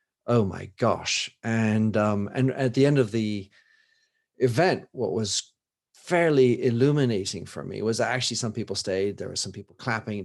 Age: 40-59